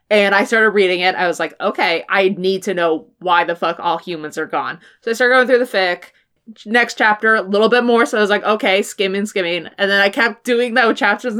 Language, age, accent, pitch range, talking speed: English, 20-39, American, 200-285 Hz, 255 wpm